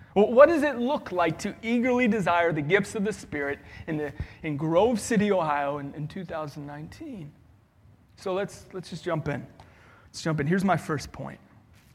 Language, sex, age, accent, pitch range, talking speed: English, male, 30-49, American, 140-200 Hz, 180 wpm